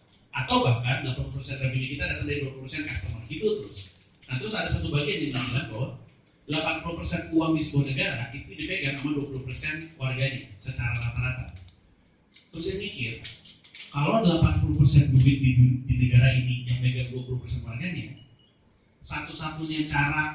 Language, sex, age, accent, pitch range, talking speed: Indonesian, male, 30-49, native, 115-150 Hz, 145 wpm